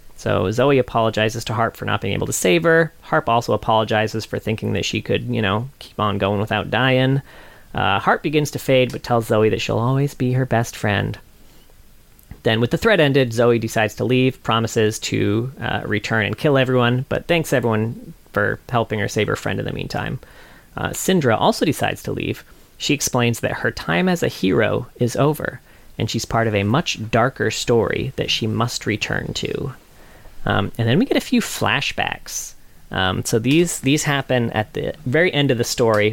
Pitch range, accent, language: 110-140 Hz, American, English